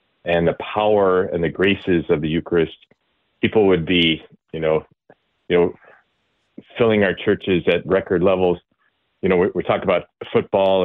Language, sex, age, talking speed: English, male, 30-49, 160 wpm